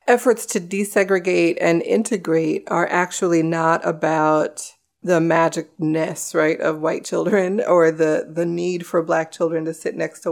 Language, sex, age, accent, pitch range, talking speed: English, female, 30-49, American, 160-185 Hz, 150 wpm